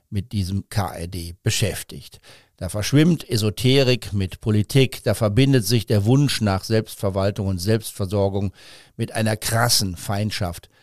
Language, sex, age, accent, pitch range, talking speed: German, male, 50-69, German, 100-120 Hz, 120 wpm